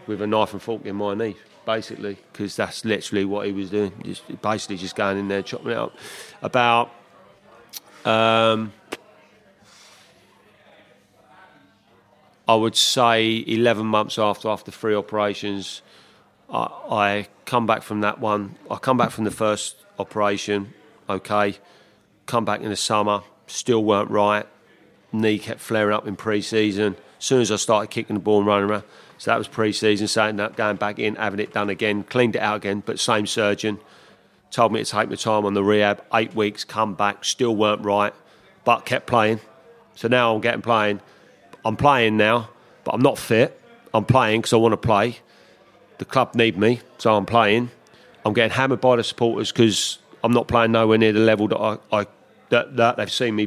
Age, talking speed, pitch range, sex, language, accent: 40-59, 180 wpm, 105-115 Hz, male, English, British